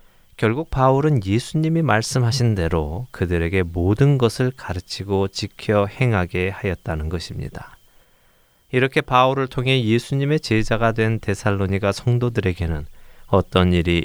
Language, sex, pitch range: Korean, male, 95-125 Hz